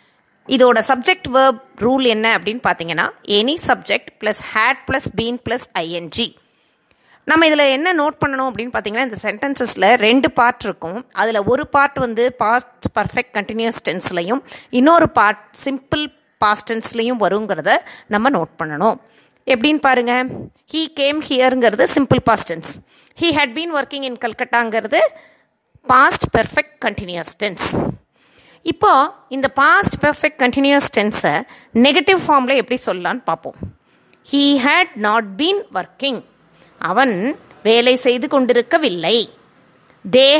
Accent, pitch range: native, 230-305 Hz